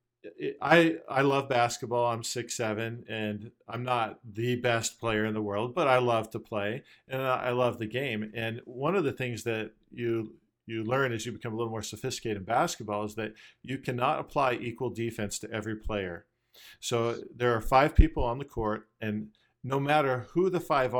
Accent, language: American, English